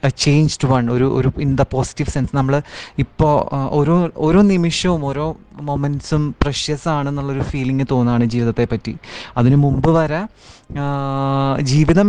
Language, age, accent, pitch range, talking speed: Malayalam, 30-49, native, 125-150 Hz, 130 wpm